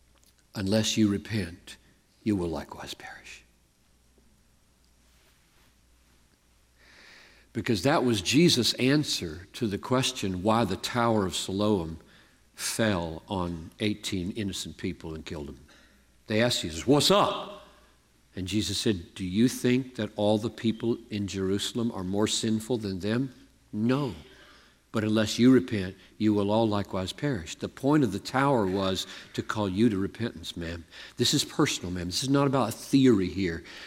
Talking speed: 145 wpm